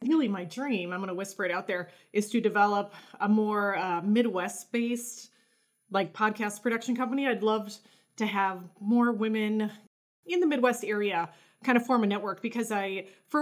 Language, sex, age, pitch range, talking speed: English, female, 30-49, 195-245 Hz, 175 wpm